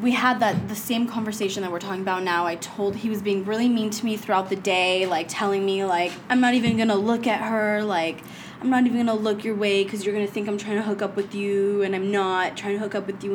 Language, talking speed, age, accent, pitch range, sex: English, 290 wpm, 20-39, American, 185-225 Hz, female